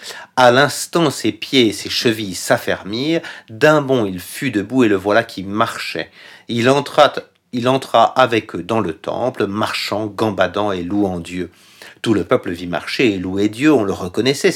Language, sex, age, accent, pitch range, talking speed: French, male, 50-69, French, 100-125 Hz, 180 wpm